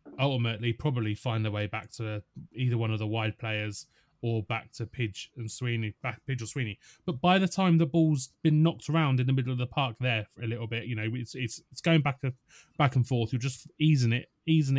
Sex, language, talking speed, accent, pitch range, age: male, English, 240 wpm, British, 115-150 Hz, 30-49